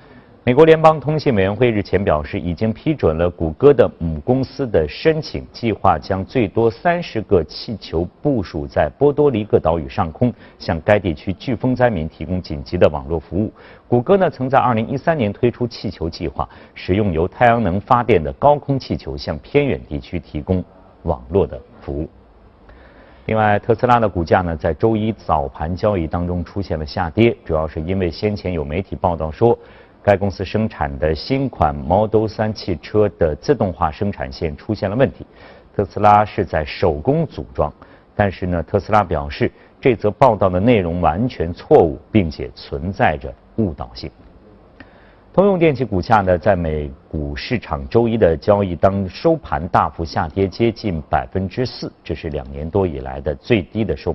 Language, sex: Chinese, male